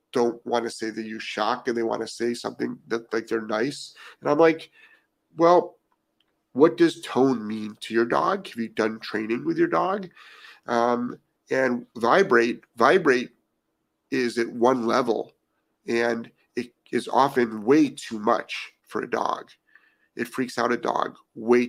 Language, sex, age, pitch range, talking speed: English, male, 40-59, 115-140 Hz, 165 wpm